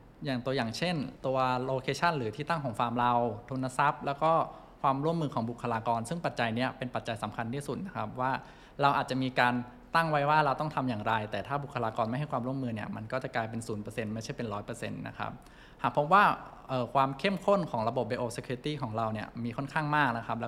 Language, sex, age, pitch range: Thai, male, 20-39, 115-140 Hz